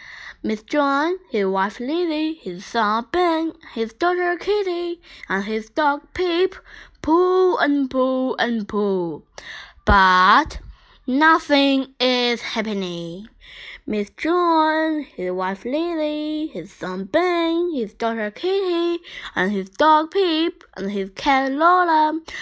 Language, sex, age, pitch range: Chinese, female, 10-29, 225-345 Hz